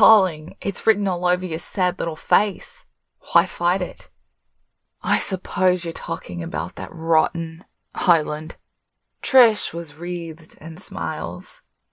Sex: female